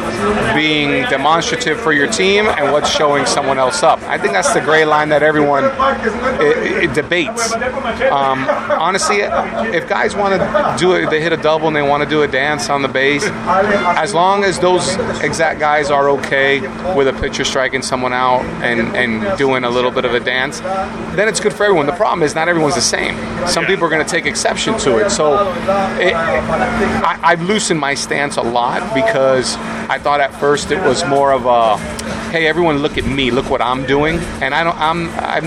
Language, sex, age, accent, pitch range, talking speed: English, male, 30-49, American, 140-180 Hz, 205 wpm